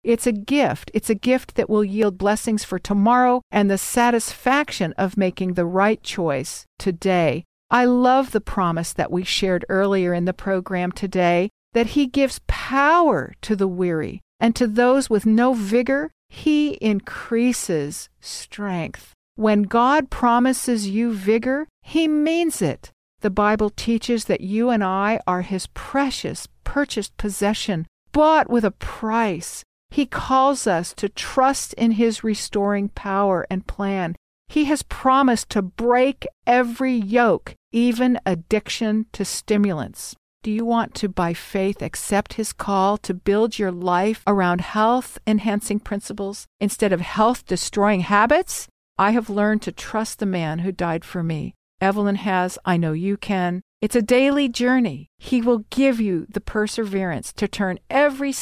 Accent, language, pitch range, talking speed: American, English, 190-245 Hz, 150 wpm